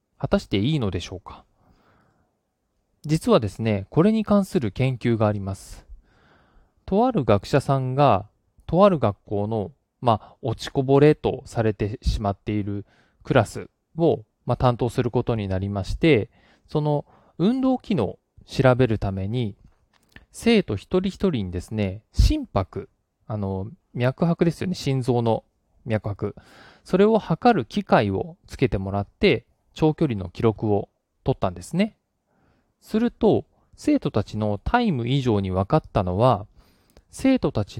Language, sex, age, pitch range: Japanese, male, 20-39, 105-165 Hz